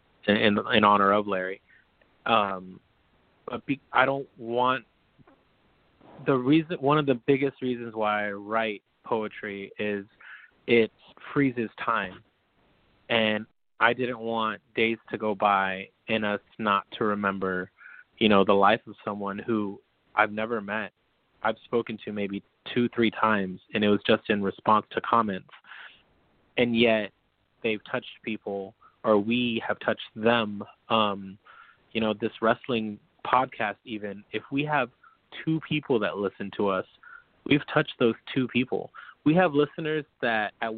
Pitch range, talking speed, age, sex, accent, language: 105-125 Hz, 145 wpm, 20-39, male, American, English